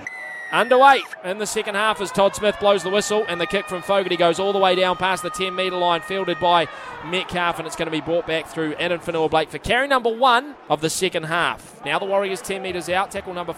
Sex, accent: male, Australian